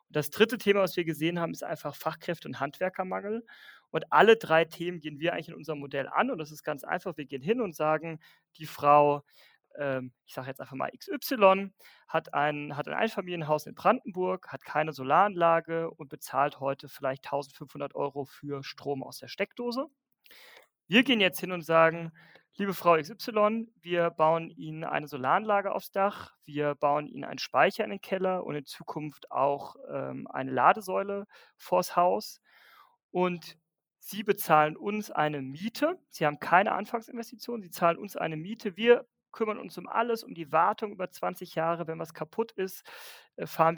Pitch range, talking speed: 150-200 Hz, 175 wpm